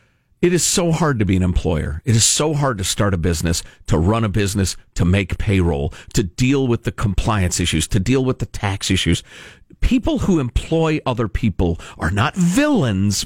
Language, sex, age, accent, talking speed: English, male, 50-69, American, 195 wpm